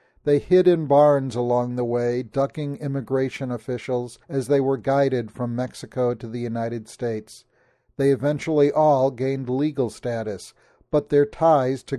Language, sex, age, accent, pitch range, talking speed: English, male, 50-69, American, 120-150 Hz, 150 wpm